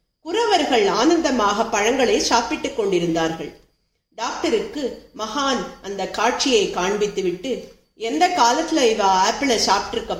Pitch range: 205-315 Hz